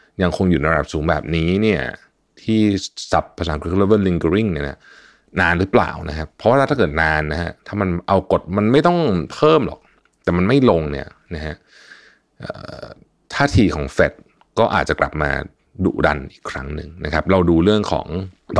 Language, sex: Thai, male